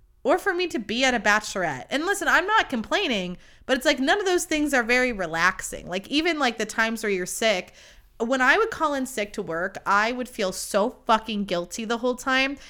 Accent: American